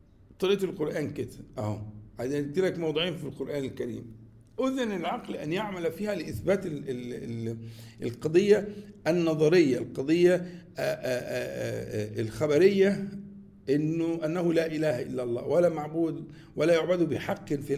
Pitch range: 145-220 Hz